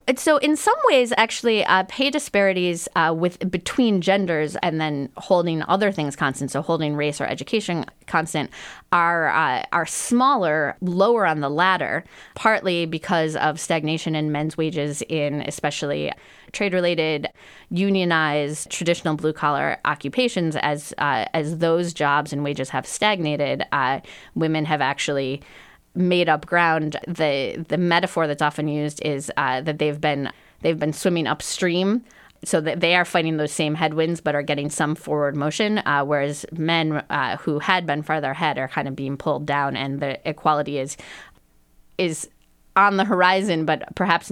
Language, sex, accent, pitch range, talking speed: English, female, American, 150-180 Hz, 160 wpm